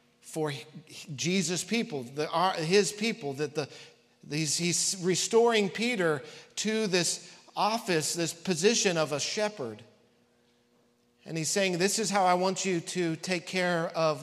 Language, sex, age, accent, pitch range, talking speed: English, male, 50-69, American, 120-185 Hz, 125 wpm